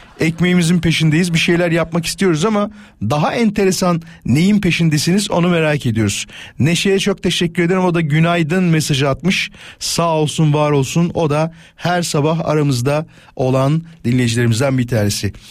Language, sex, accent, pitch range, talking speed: Turkish, male, native, 135-180 Hz, 140 wpm